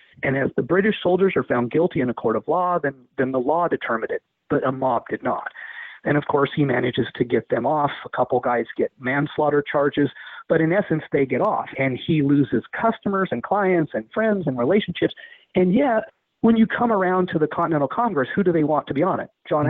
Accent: American